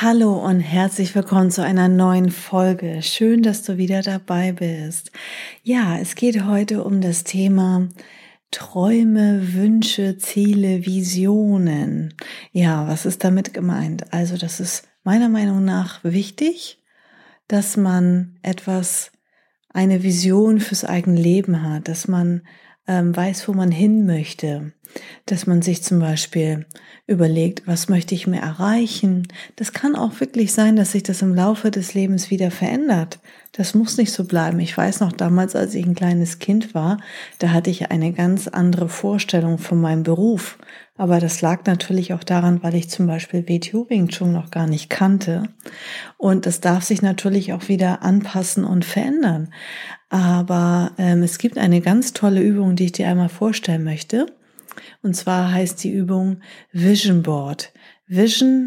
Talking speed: 155 wpm